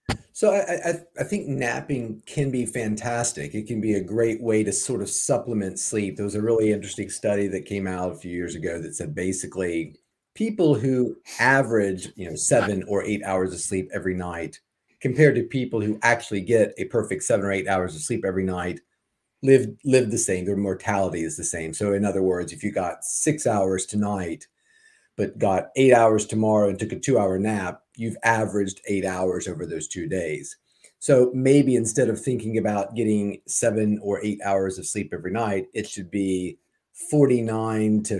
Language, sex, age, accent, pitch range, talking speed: English, male, 40-59, American, 95-120 Hz, 195 wpm